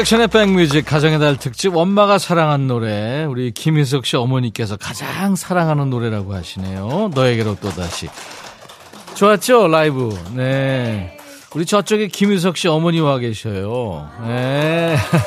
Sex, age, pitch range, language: male, 40-59, 120-175 Hz, Korean